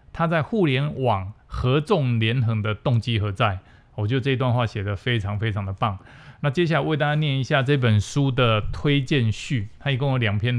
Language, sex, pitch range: Chinese, male, 115-145 Hz